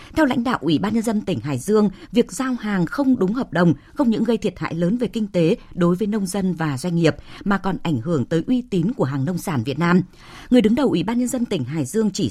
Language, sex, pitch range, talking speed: Vietnamese, female, 165-235 Hz, 280 wpm